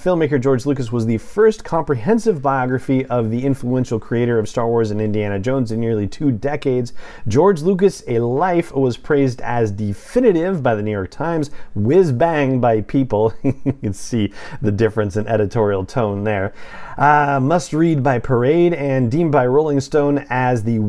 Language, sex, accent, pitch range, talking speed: English, male, American, 110-145 Hz, 170 wpm